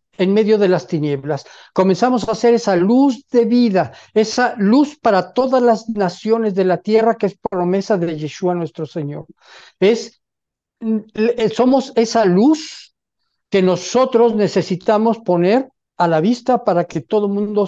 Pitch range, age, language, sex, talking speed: 180-235 Hz, 50-69, Spanish, male, 150 wpm